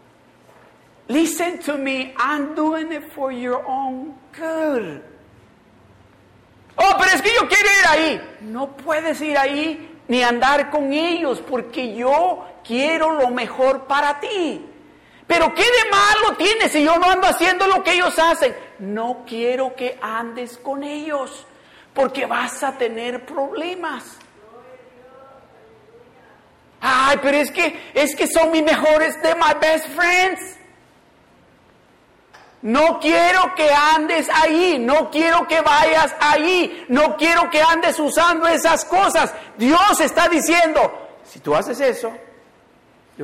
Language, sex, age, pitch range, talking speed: Spanish, male, 50-69, 245-330 Hz, 135 wpm